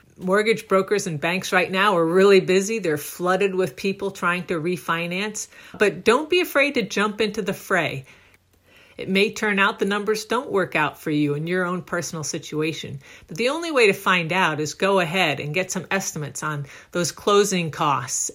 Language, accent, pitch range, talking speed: English, American, 155-200 Hz, 195 wpm